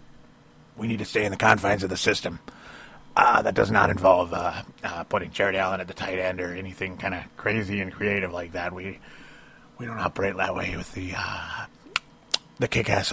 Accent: American